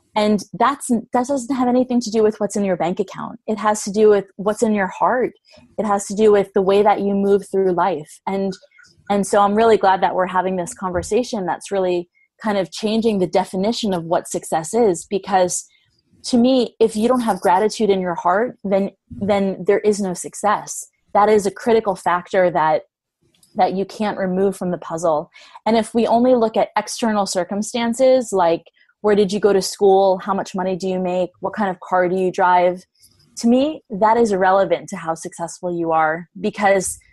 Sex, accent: female, American